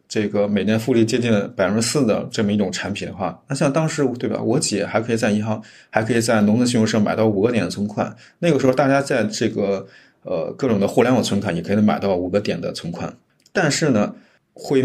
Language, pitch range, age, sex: Chinese, 105-125 Hz, 20-39, male